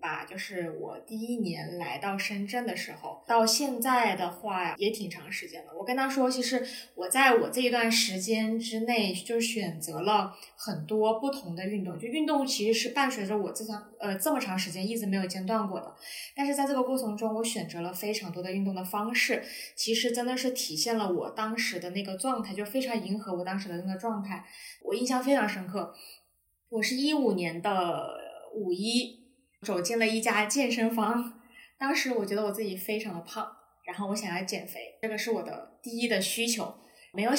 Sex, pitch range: female, 185-235 Hz